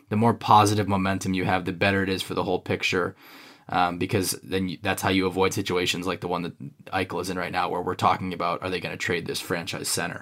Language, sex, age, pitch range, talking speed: English, male, 20-39, 100-130 Hz, 255 wpm